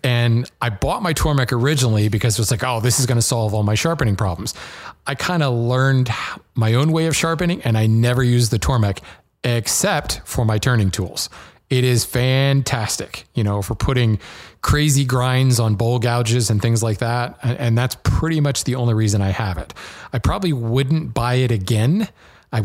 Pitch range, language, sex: 110-135 Hz, English, male